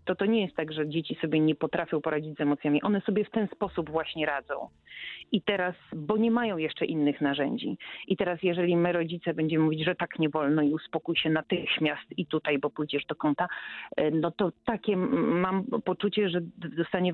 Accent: native